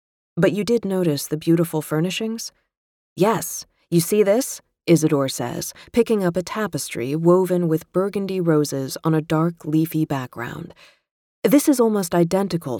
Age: 30-49